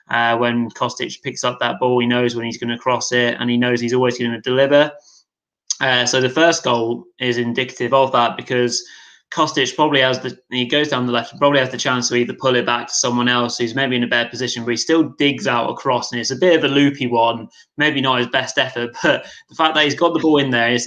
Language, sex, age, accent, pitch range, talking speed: English, male, 20-39, British, 120-135 Hz, 260 wpm